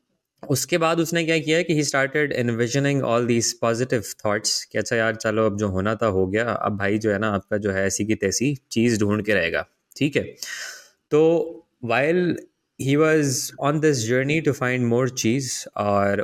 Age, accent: 20-39, native